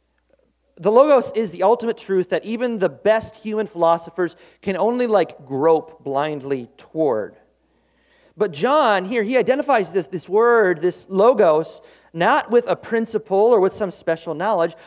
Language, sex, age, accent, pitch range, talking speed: English, male, 30-49, American, 160-230 Hz, 150 wpm